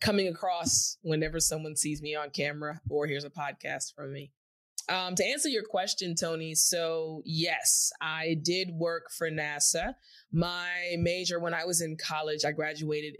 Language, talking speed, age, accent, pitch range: English, 165 wpm, 20-39, American, 145-175 Hz